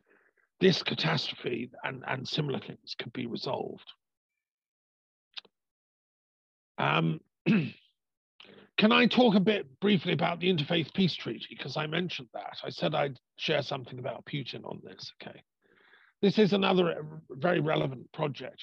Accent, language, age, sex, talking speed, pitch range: British, English, 50-69, male, 135 wpm, 140-195 Hz